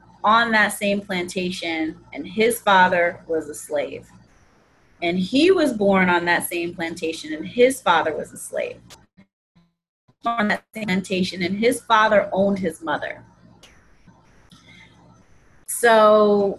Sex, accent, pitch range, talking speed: female, American, 170-205 Hz, 125 wpm